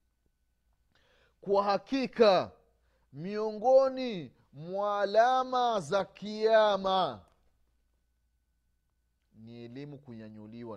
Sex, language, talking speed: male, Swahili, 55 wpm